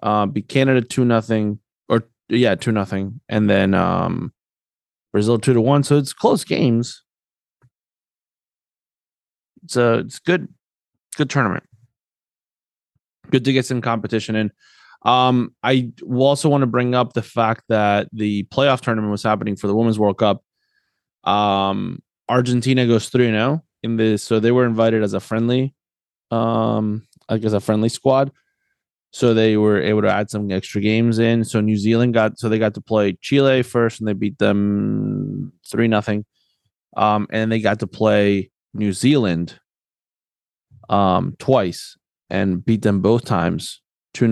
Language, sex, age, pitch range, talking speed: English, male, 20-39, 105-125 Hz, 150 wpm